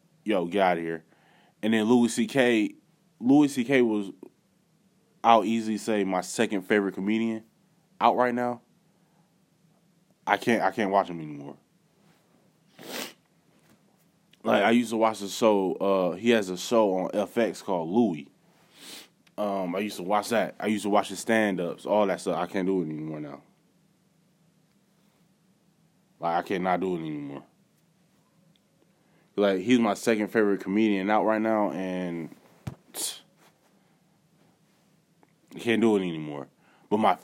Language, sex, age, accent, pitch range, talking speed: English, male, 20-39, American, 95-135 Hz, 145 wpm